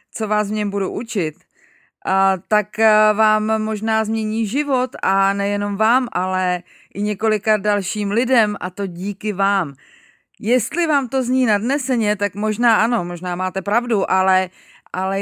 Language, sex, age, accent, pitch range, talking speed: Czech, female, 30-49, native, 175-220 Hz, 140 wpm